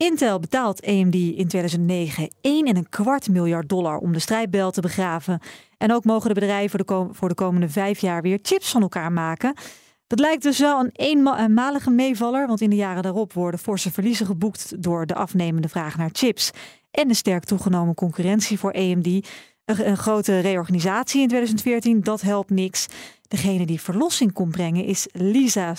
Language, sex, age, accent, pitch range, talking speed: Dutch, female, 40-59, Dutch, 180-245 Hz, 180 wpm